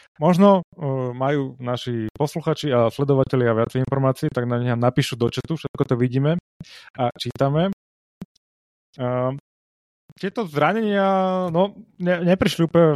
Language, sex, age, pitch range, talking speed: Slovak, male, 20-39, 130-155 Hz, 135 wpm